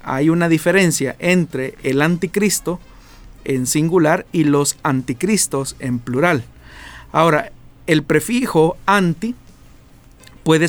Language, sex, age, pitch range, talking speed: Spanish, male, 50-69, 135-180 Hz, 100 wpm